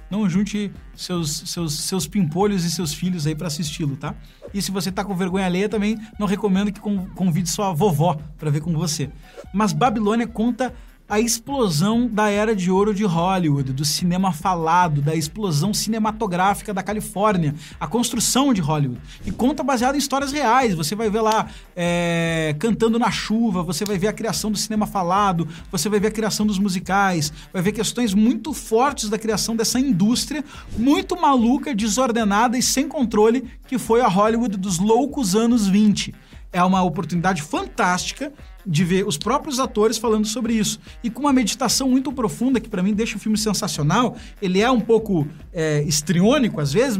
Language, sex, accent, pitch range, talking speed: Portuguese, male, Brazilian, 180-230 Hz, 175 wpm